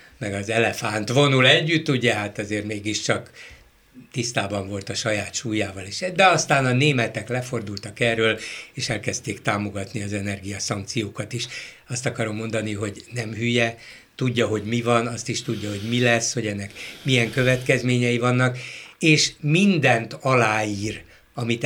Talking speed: 140 wpm